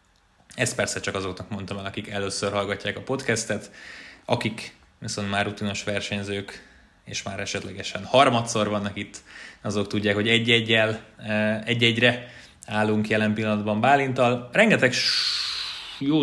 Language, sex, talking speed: Hungarian, male, 120 wpm